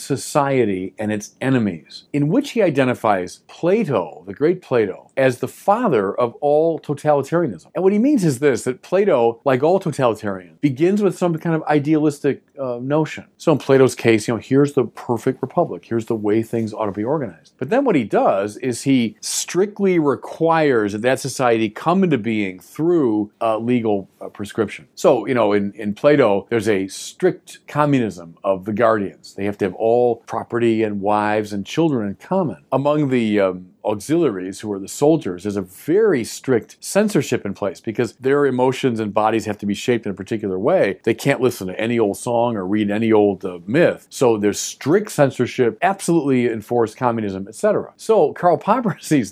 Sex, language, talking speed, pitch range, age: male, English, 185 wpm, 105-145 Hz, 40-59